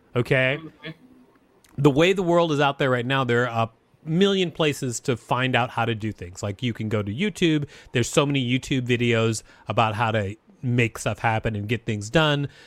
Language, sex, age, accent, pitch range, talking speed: English, male, 30-49, American, 120-145 Hz, 205 wpm